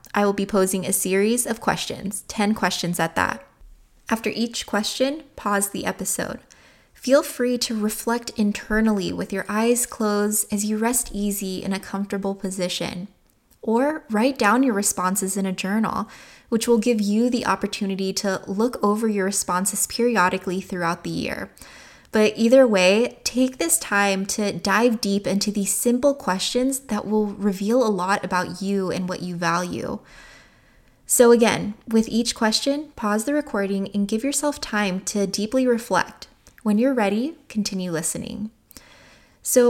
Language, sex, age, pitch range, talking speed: English, female, 20-39, 195-235 Hz, 155 wpm